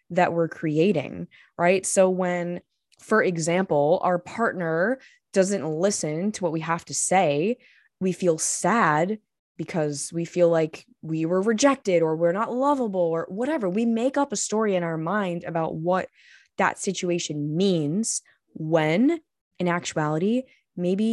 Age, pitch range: 20-39, 160-200 Hz